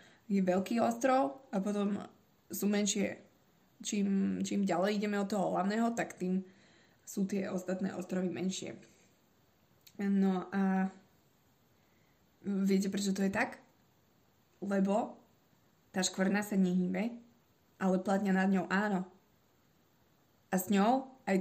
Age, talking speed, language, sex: 20-39, 120 wpm, Slovak, female